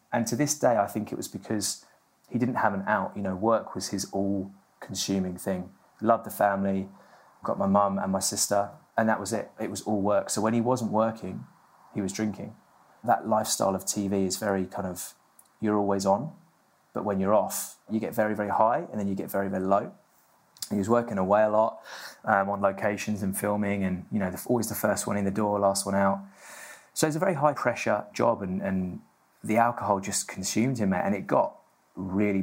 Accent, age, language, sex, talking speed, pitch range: British, 20-39, English, male, 210 wpm, 95-110 Hz